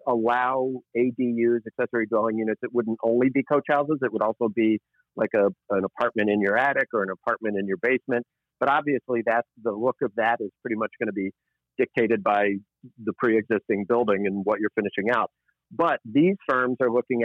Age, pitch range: 50-69, 105-125 Hz